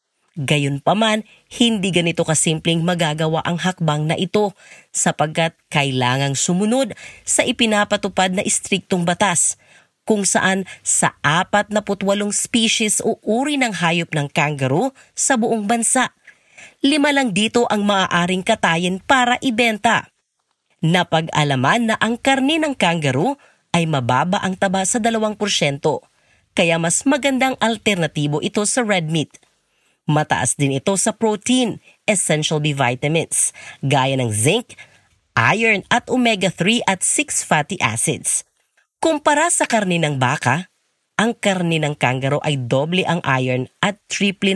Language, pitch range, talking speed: Filipino, 155-225 Hz, 125 wpm